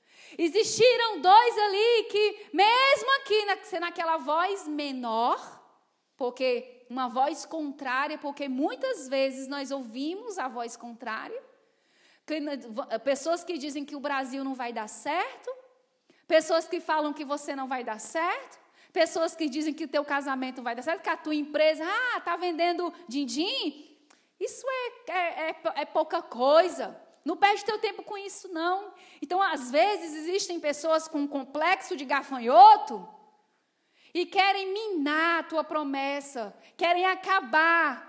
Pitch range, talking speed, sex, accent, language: 290-400 Hz, 145 wpm, female, Brazilian, Portuguese